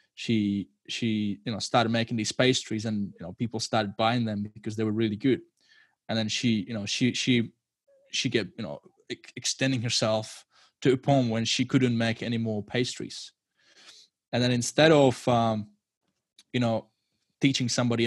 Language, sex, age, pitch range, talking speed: English, male, 20-39, 110-125 Hz, 170 wpm